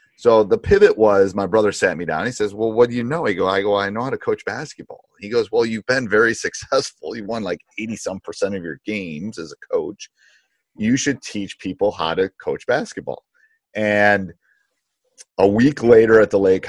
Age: 30-49